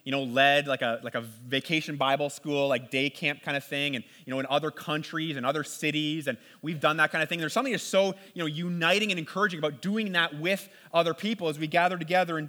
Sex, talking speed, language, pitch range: male, 250 wpm, English, 155-205 Hz